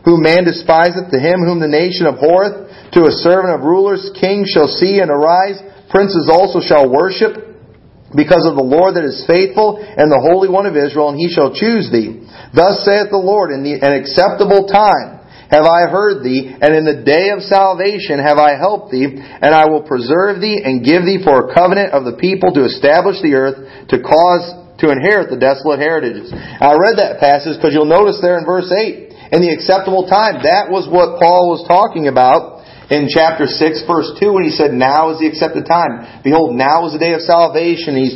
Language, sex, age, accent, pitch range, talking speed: English, male, 40-59, American, 150-190 Hz, 205 wpm